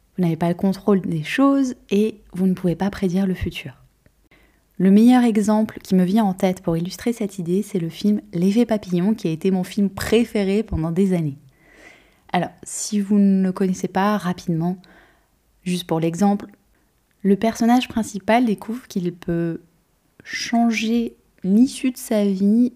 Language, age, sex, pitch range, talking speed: French, 20-39, female, 180-230 Hz, 165 wpm